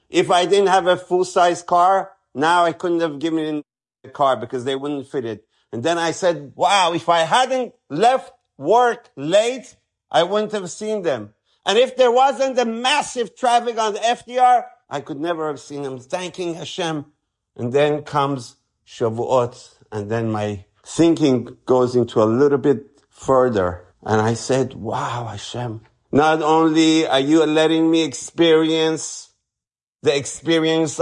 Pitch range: 125-175 Hz